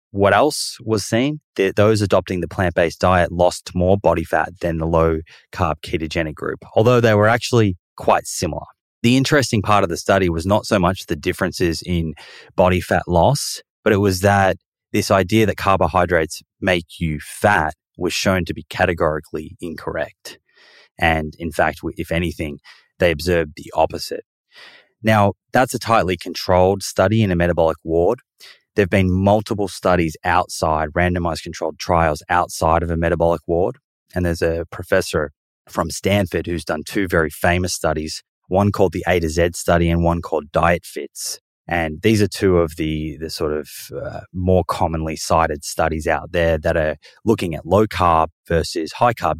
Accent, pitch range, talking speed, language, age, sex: Australian, 80-100 Hz, 165 wpm, English, 20-39, male